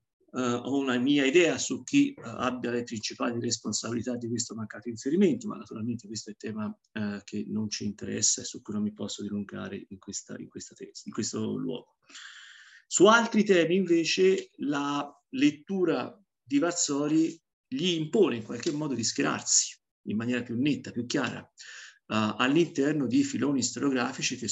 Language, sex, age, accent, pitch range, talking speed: Italian, male, 50-69, native, 115-150 Hz, 165 wpm